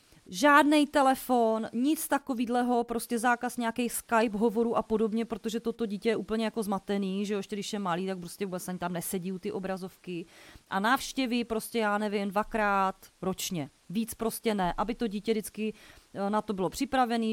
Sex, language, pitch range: female, Czech, 200-230 Hz